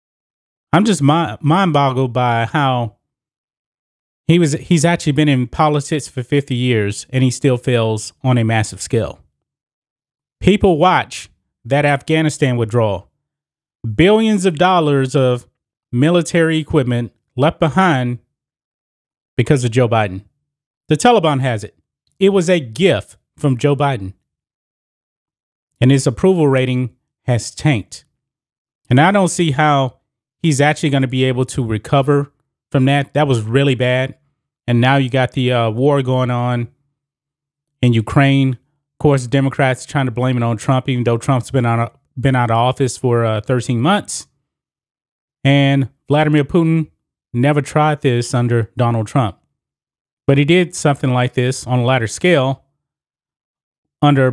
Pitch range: 125-150 Hz